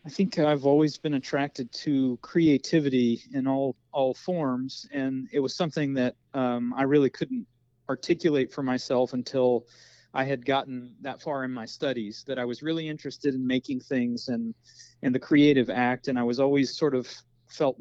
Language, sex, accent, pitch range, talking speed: English, male, American, 125-145 Hz, 180 wpm